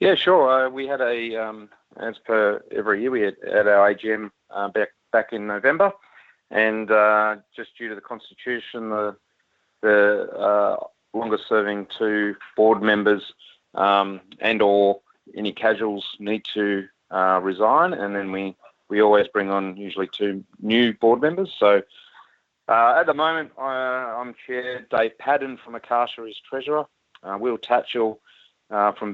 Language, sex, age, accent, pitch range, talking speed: English, male, 30-49, Australian, 105-120 Hz, 155 wpm